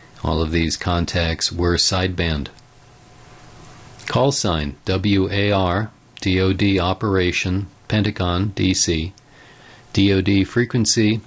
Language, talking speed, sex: English, 80 wpm, male